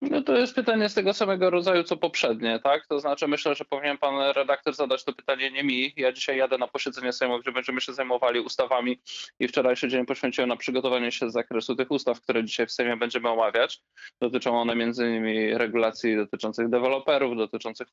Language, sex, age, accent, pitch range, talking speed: Polish, male, 20-39, native, 120-140 Hz, 200 wpm